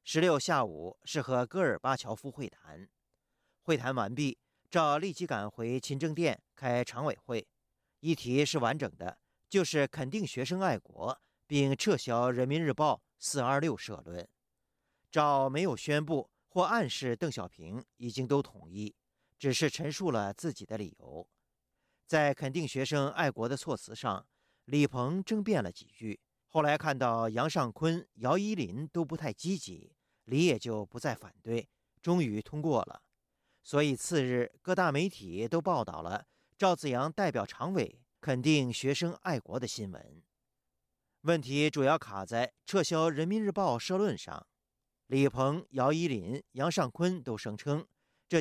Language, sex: Chinese, male